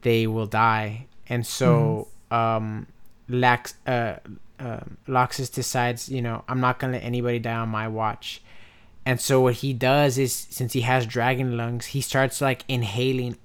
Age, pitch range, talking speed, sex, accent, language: 20-39, 115-130 Hz, 160 wpm, male, American, English